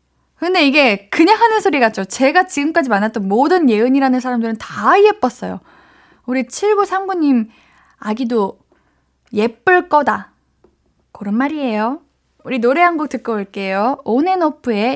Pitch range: 220-320 Hz